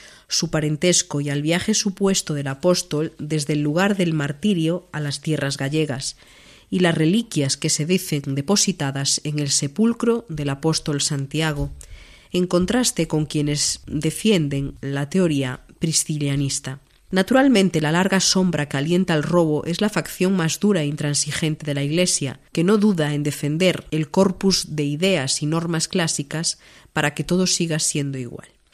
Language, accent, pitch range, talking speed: Spanish, Spanish, 145-185 Hz, 155 wpm